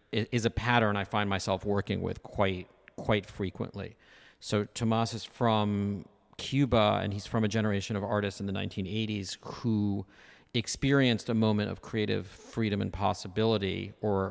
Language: English